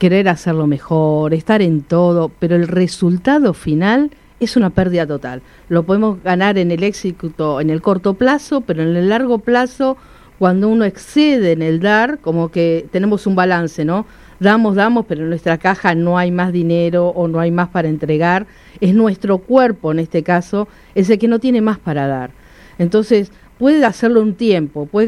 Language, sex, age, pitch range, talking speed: Spanish, female, 50-69, 165-205 Hz, 185 wpm